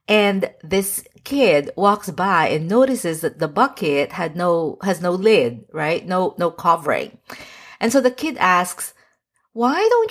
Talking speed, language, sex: 155 wpm, English, female